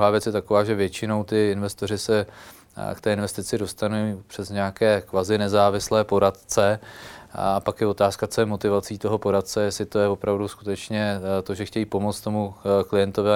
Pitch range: 95-105 Hz